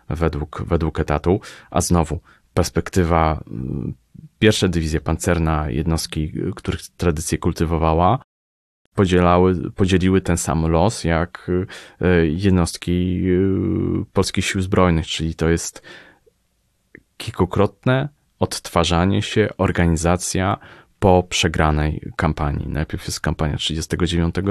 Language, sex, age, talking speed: Polish, male, 30-49, 90 wpm